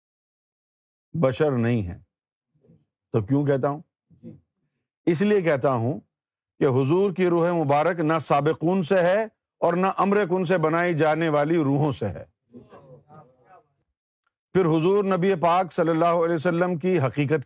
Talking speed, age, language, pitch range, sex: 140 wpm, 50-69, Urdu, 130-185 Hz, male